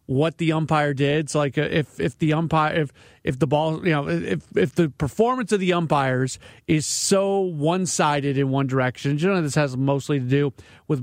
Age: 40-59